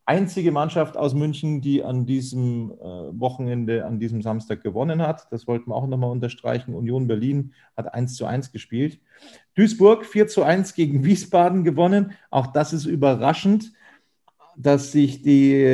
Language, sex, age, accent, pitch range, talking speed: German, male, 40-59, German, 120-155 Hz, 155 wpm